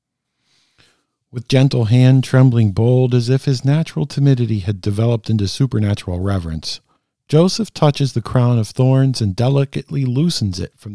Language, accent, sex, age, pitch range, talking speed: English, American, male, 50-69, 100-130 Hz, 145 wpm